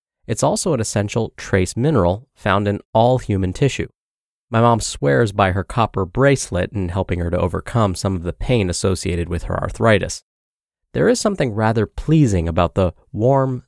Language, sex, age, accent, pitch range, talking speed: English, male, 30-49, American, 95-130 Hz, 170 wpm